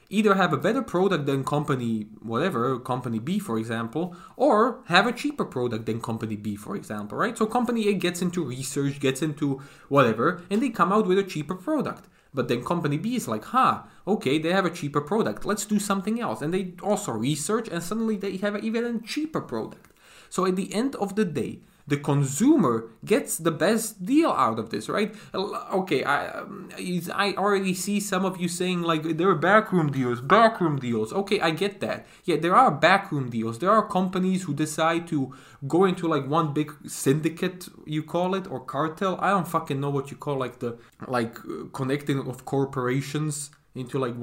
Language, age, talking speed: English, 20-39, 195 wpm